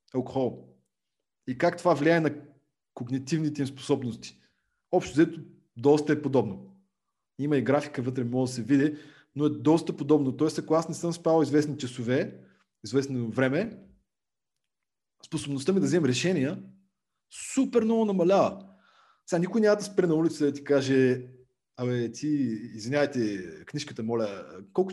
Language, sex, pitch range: Bulgarian, male, 130-170 Hz